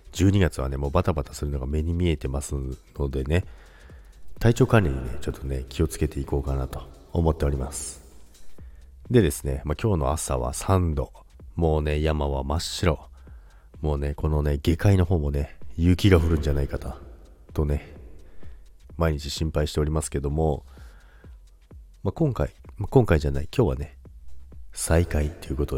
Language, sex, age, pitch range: Japanese, male, 40-59, 70-90 Hz